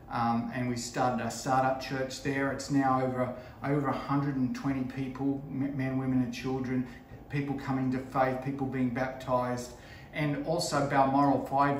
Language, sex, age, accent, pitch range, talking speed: English, male, 40-59, Australian, 130-150 Hz, 145 wpm